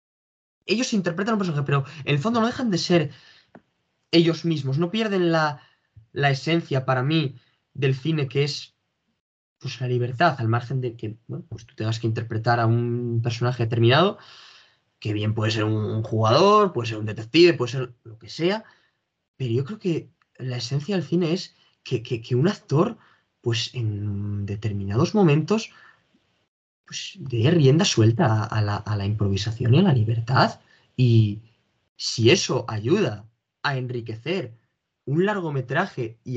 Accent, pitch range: Spanish, 110-150 Hz